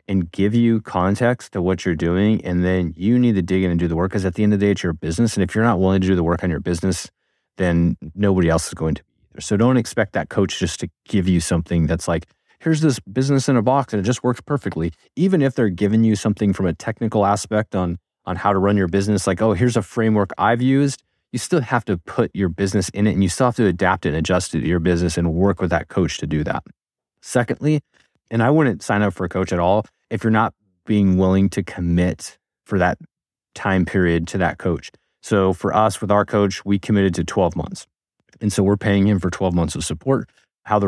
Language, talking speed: English, 255 wpm